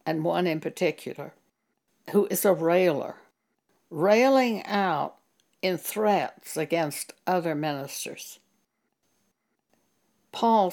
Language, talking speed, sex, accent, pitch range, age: English, 90 wpm, female, American, 160-210 Hz, 60-79